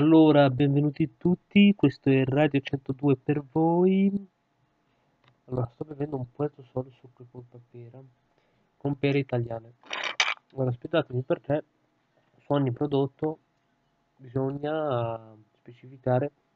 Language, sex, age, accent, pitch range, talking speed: Italian, male, 30-49, native, 125-145 Hz, 105 wpm